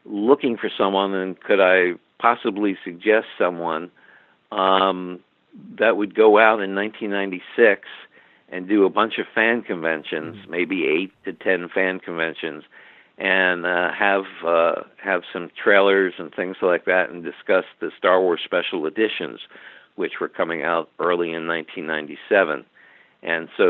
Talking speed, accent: 135 wpm, American